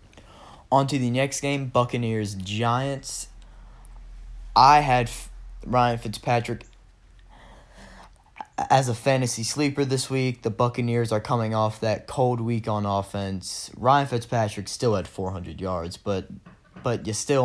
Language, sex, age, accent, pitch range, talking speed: English, male, 10-29, American, 100-125 Hz, 130 wpm